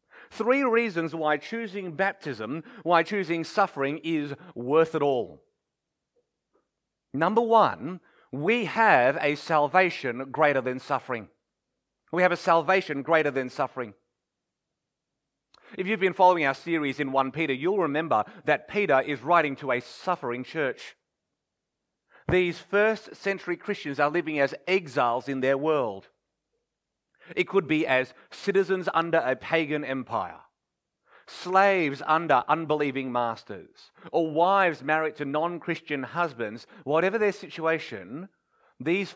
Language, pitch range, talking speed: English, 140-190 Hz, 125 wpm